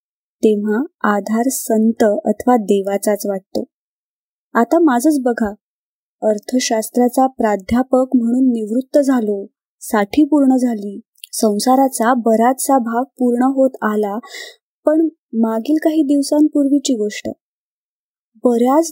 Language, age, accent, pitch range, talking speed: Marathi, 20-39, native, 225-275 Hz, 90 wpm